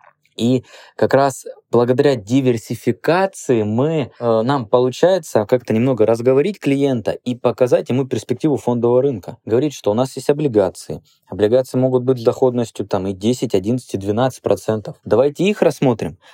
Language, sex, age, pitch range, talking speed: Russian, male, 20-39, 105-130 Hz, 140 wpm